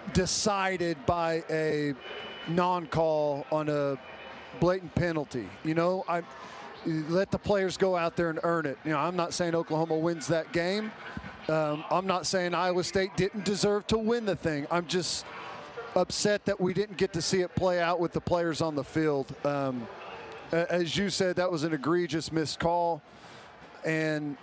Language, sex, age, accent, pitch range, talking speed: English, male, 40-59, American, 160-195 Hz, 170 wpm